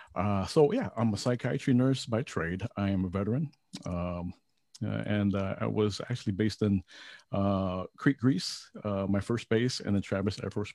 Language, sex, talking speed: English, male, 185 wpm